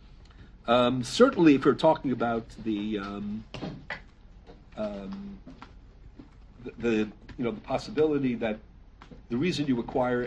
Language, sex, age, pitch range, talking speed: English, male, 60-79, 105-130 Hz, 115 wpm